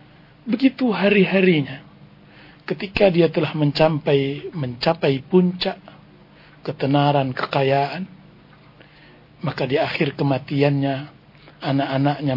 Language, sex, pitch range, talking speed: Indonesian, male, 145-175 Hz, 75 wpm